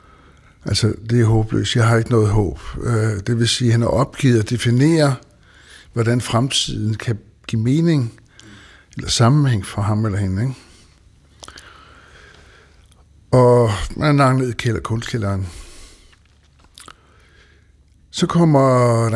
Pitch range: 90-135 Hz